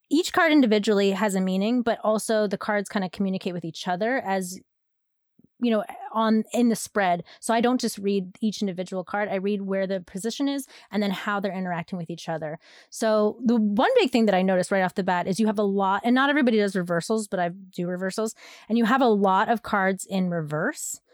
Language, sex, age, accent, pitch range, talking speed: English, female, 20-39, American, 190-240 Hz, 225 wpm